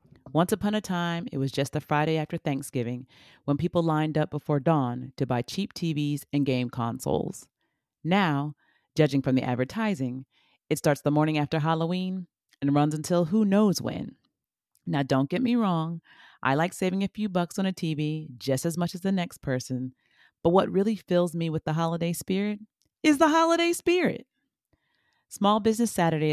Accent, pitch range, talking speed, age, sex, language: American, 135-175 Hz, 180 wpm, 30-49, female, English